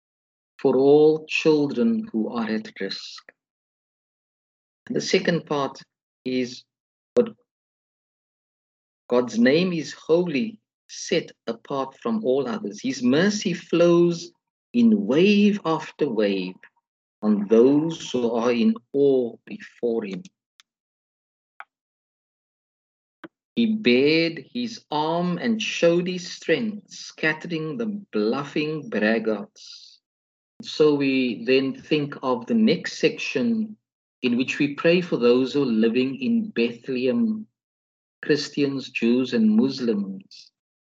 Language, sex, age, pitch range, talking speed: English, male, 50-69, 120-185 Hz, 100 wpm